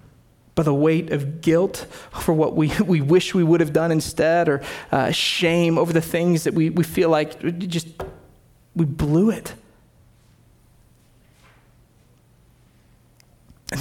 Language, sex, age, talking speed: English, male, 30-49, 135 wpm